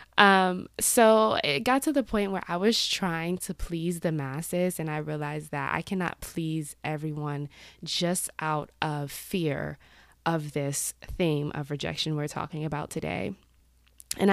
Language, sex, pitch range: English, female, 155-200 Hz